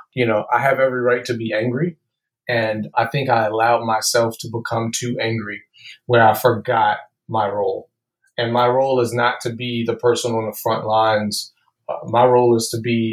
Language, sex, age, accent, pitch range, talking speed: English, male, 30-49, American, 115-130 Hz, 195 wpm